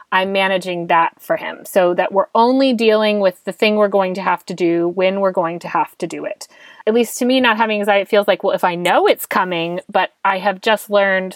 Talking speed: 250 wpm